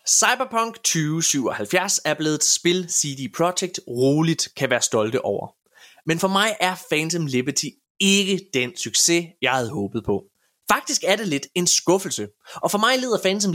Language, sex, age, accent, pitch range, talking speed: Danish, male, 20-39, native, 130-200 Hz, 165 wpm